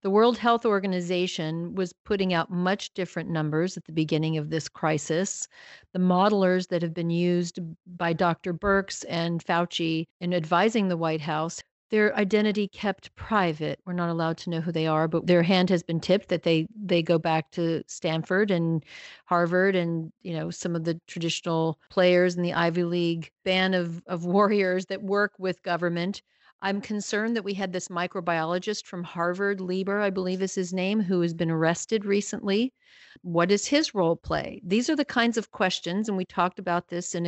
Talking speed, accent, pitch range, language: 185 wpm, American, 170-200 Hz, English